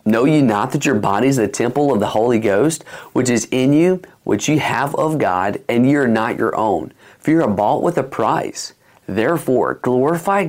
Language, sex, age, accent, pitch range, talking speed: English, male, 40-59, American, 105-150 Hz, 205 wpm